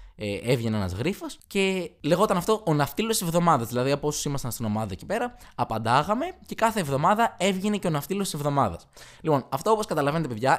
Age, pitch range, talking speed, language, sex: 20-39, 120-175 Hz, 195 wpm, Greek, male